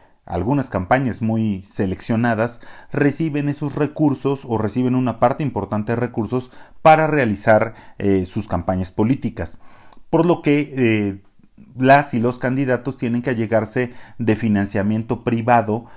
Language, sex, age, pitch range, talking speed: Spanish, male, 40-59, 105-135 Hz, 130 wpm